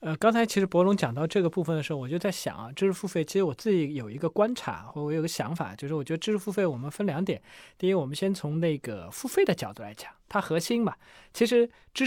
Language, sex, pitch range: Chinese, male, 155-195 Hz